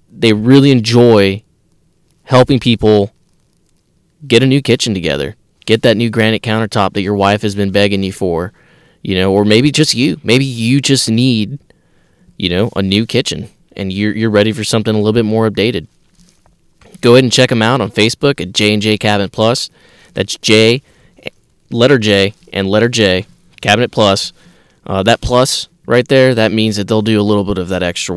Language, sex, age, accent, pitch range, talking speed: English, male, 20-39, American, 100-120 Hz, 185 wpm